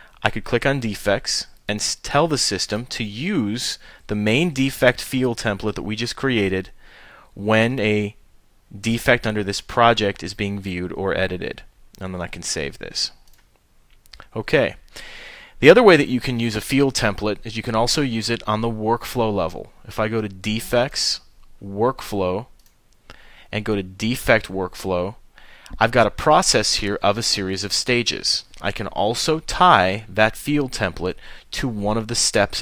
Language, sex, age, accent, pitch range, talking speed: English, male, 30-49, American, 100-120 Hz, 165 wpm